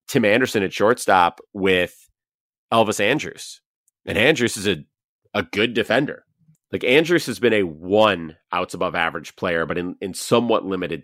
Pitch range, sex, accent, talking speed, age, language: 90-130 Hz, male, American, 140 wpm, 30-49, English